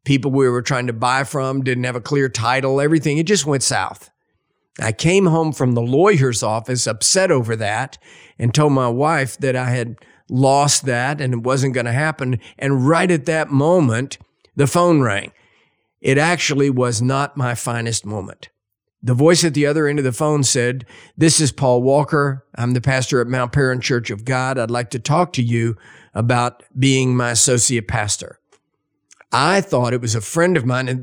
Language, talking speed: English, 195 wpm